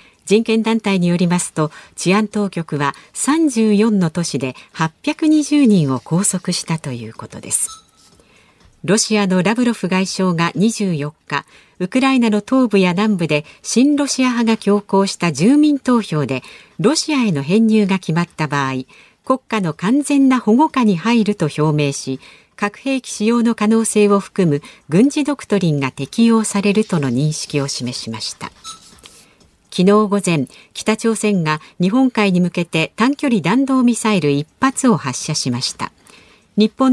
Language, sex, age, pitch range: Japanese, female, 50-69, 160-235 Hz